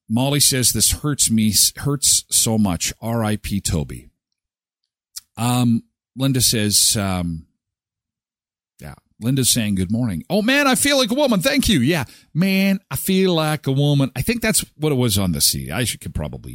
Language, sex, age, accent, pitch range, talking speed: English, male, 50-69, American, 100-160 Hz, 175 wpm